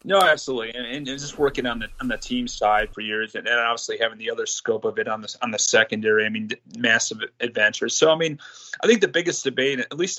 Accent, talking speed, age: American, 245 wpm, 30-49